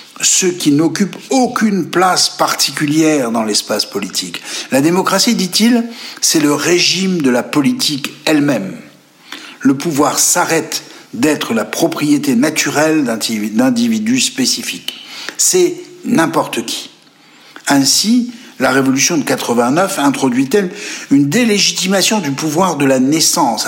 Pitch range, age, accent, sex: 155-255 Hz, 60-79, French, male